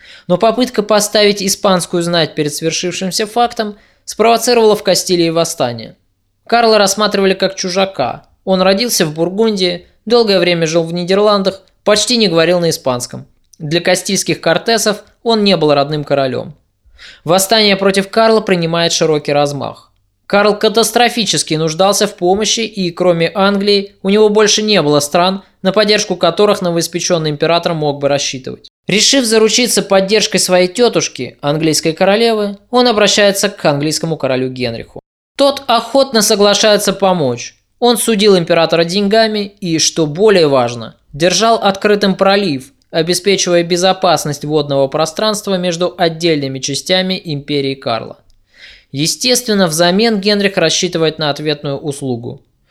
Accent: native